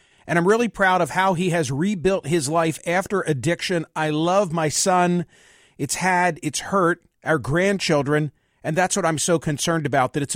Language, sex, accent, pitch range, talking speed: English, male, American, 150-180 Hz, 185 wpm